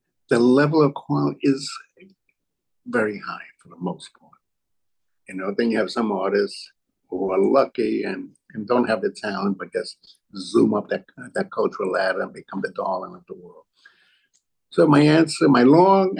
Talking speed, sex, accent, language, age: 175 wpm, male, American, English, 50-69